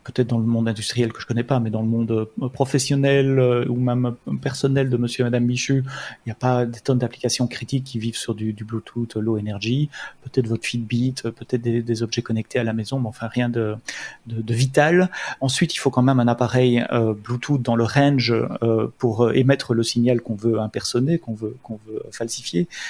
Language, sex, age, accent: French, male, 30-49, French